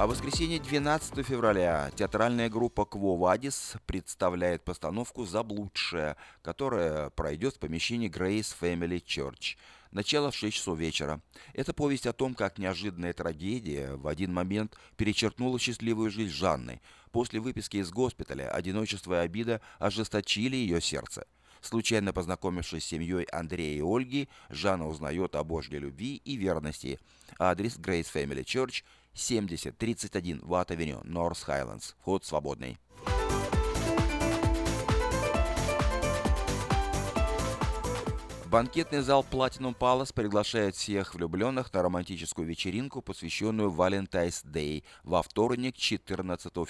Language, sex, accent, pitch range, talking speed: Russian, male, native, 80-115 Hz, 115 wpm